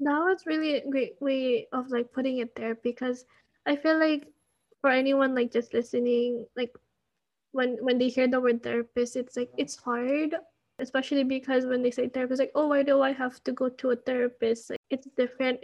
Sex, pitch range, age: female, 255-290 Hz, 20-39